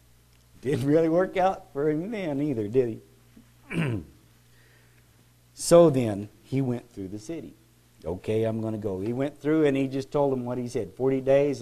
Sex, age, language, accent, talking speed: male, 50-69, English, American, 180 wpm